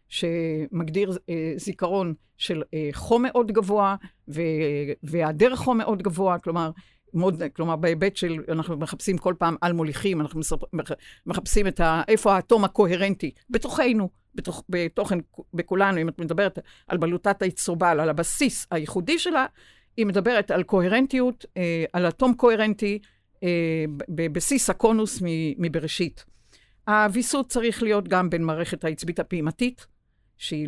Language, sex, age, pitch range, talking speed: Hebrew, female, 50-69, 160-200 Hz, 125 wpm